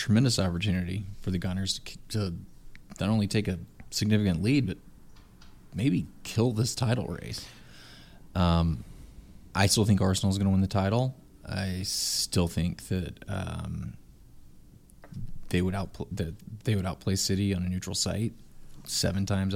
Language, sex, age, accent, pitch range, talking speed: English, male, 20-39, American, 90-110 Hz, 150 wpm